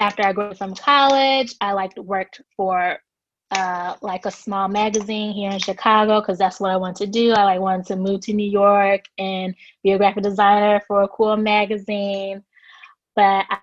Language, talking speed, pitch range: English, 190 wpm, 190-210 Hz